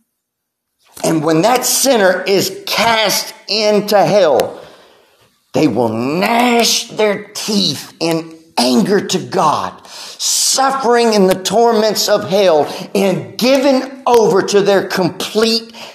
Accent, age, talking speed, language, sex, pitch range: American, 50-69, 110 wpm, English, male, 180-235 Hz